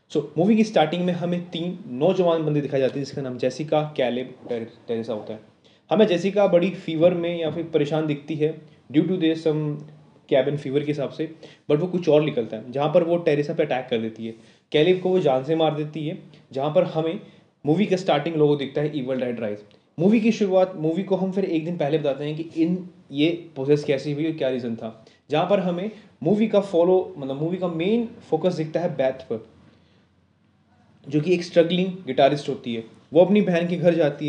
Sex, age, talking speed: male, 20-39, 215 wpm